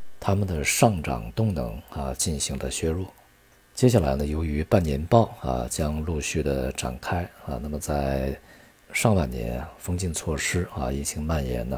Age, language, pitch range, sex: 50-69, Chinese, 65-95 Hz, male